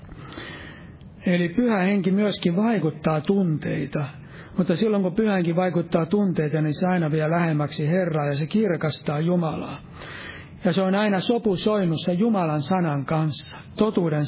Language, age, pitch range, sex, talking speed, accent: Finnish, 60-79, 155-190 Hz, male, 135 wpm, native